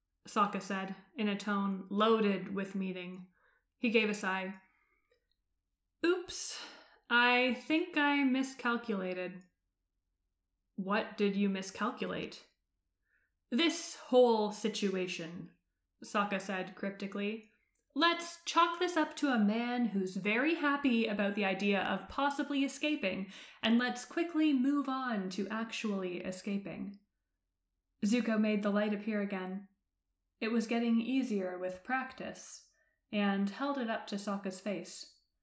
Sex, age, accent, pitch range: female, 20-39, American, 190-245 Hz